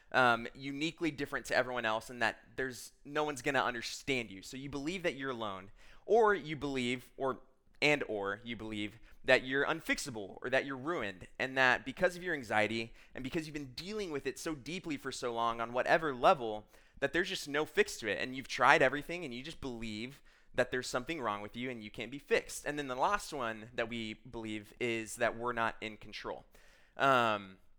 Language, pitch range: English, 120-160 Hz